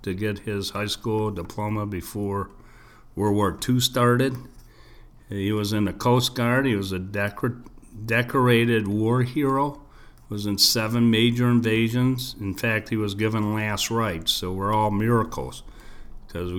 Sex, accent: male, American